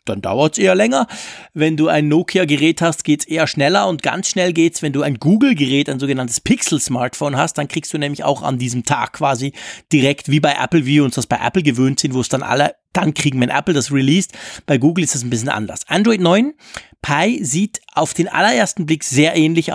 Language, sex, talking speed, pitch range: German, male, 220 wpm, 140-180 Hz